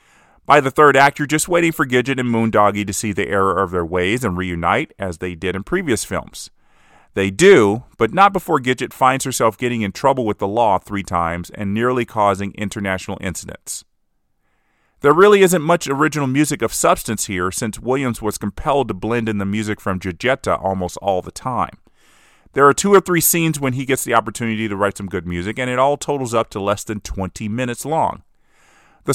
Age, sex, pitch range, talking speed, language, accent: 30-49, male, 100-130 Hz, 205 wpm, English, American